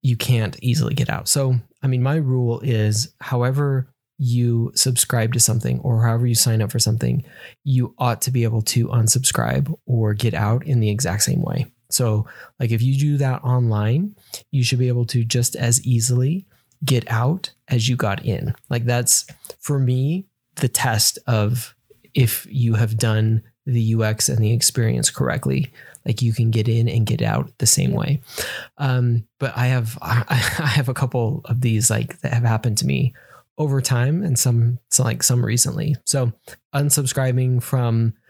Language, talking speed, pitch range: English, 180 wpm, 115-135 Hz